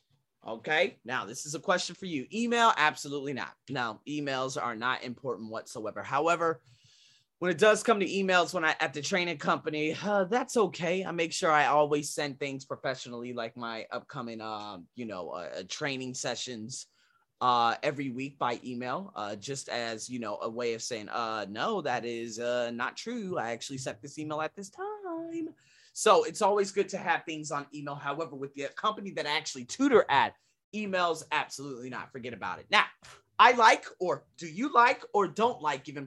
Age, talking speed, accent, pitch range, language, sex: 20-39, 190 wpm, American, 125-180 Hz, English, male